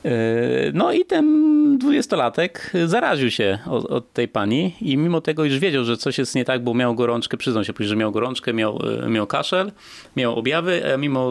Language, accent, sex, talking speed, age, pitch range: Polish, native, male, 180 wpm, 30-49, 110-135 Hz